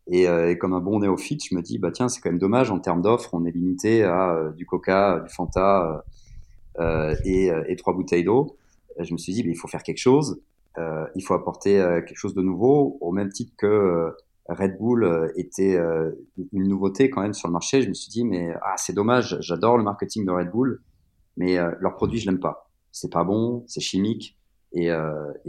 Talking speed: 235 wpm